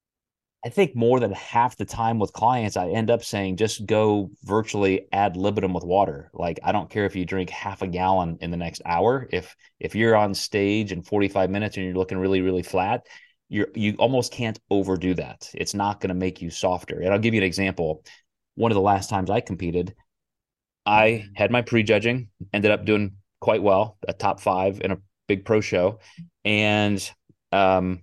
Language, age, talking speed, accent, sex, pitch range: English, 30-49, 200 wpm, American, male, 95-115 Hz